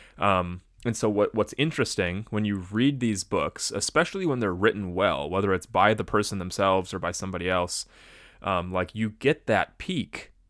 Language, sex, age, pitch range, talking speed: English, male, 20-39, 90-110 Hz, 185 wpm